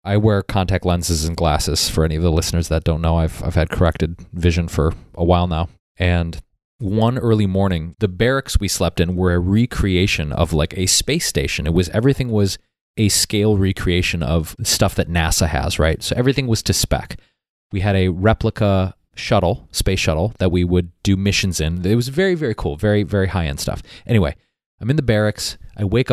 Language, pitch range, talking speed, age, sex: English, 85-110 Hz, 200 wpm, 20-39, male